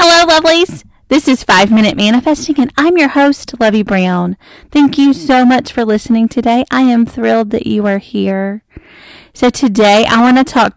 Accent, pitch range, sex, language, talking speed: American, 200-260 Hz, female, English, 180 wpm